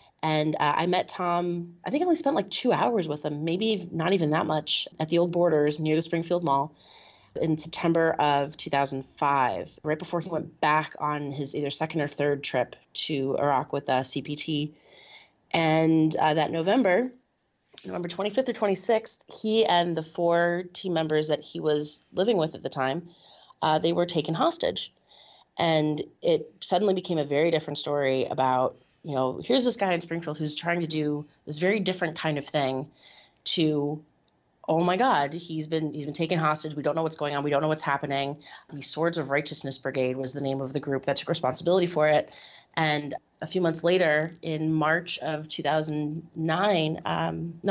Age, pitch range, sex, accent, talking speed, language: 20-39, 150-175 Hz, female, American, 185 wpm, English